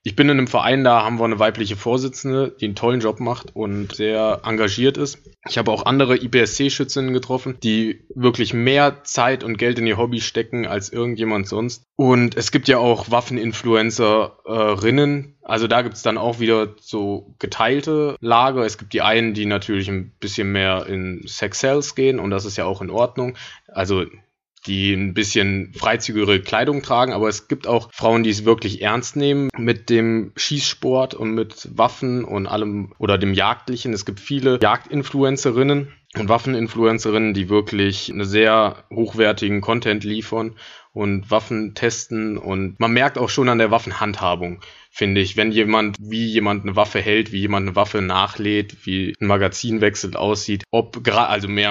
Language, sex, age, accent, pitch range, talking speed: German, male, 20-39, German, 105-120 Hz, 175 wpm